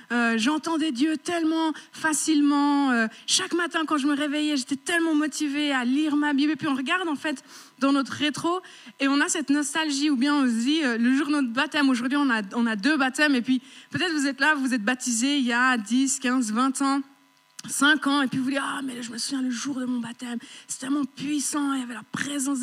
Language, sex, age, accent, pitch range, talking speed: French, female, 20-39, French, 265-310 Hz, 250 wpm